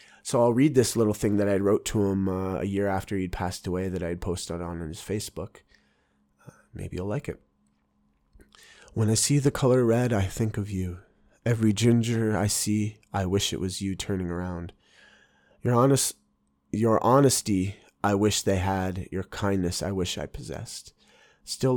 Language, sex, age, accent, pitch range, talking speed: English, male, 20-39, American, 90-110 Hz, 175 wpm